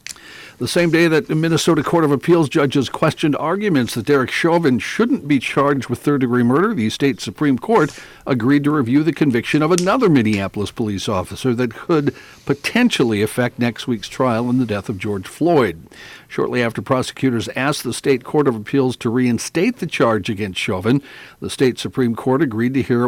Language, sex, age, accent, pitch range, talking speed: English, male, 60-79, American, 110-135 Hz, 180 wpm